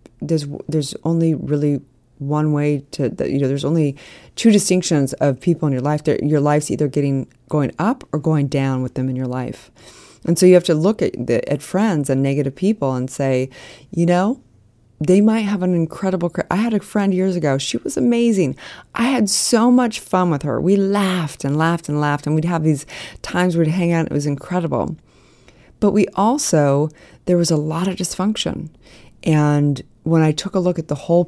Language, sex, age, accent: English, female, 30-49, American